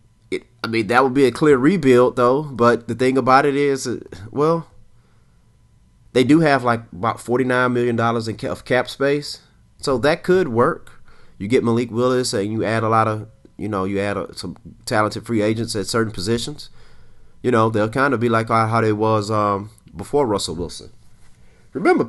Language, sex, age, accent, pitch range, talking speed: English, male, 30-49, American, 100-125 Hz, 180 wpm